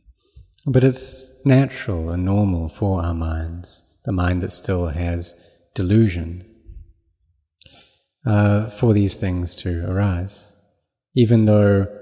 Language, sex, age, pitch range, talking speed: English, male, 30-49, 90-110 Hz, 110 wpm